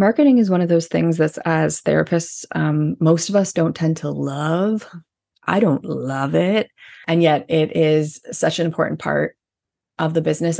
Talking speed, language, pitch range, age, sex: 180 wpm, English, 160-185 Hz, 20-39, female